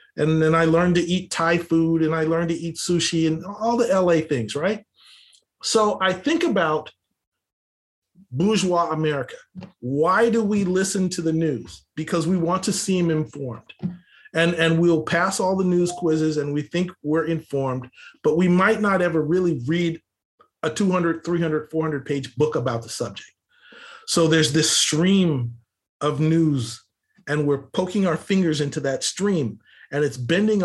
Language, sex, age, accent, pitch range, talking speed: English, male, 40-59, American, 150-180 Hz, 165 wpm